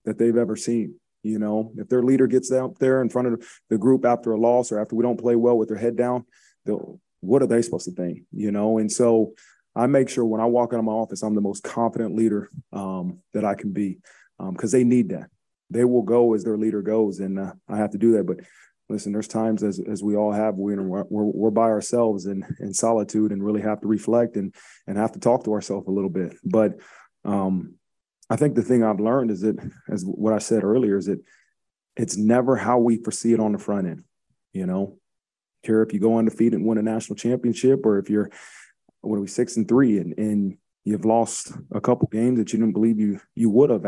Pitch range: 105-120 Hz